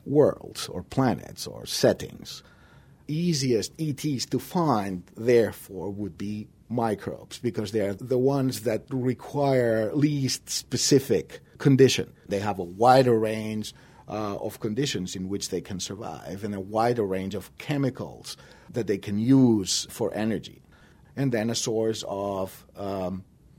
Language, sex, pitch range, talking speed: English, male, 95-120 Hz, 135 wpm